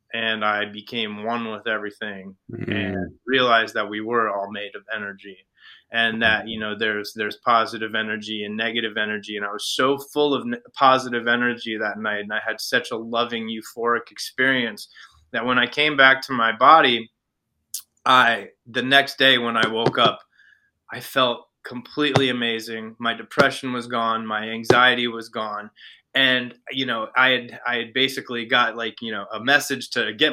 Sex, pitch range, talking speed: male, 110-130 Hz, 175 wpm